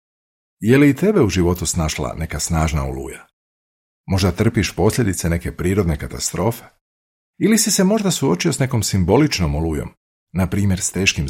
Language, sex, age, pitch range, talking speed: Croatian, male, 50-69, 80-115 Hz, 155 wpm